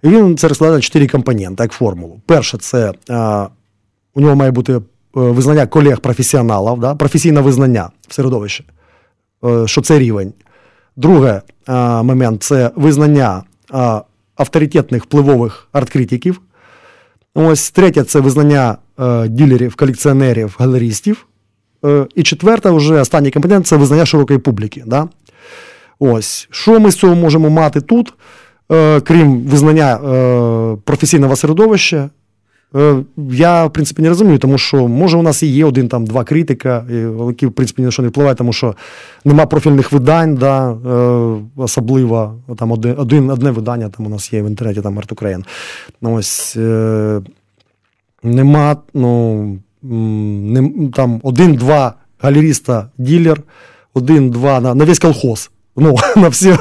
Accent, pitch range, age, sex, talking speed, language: native, 115-150 Hz, 20-39, male, 125 wpm, Ukrainian